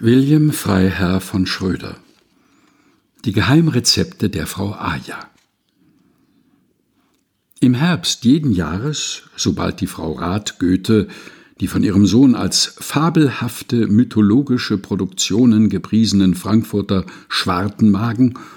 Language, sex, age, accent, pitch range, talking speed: German, male, 60-79, German, 95-120 Hz, 95 wpm